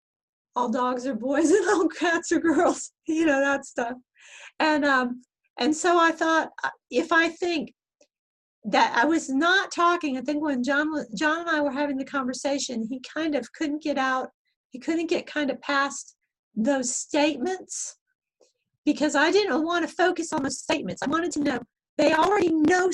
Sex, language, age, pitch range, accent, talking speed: female, English, 40-59, 255-320 Hz, American, 180 wpm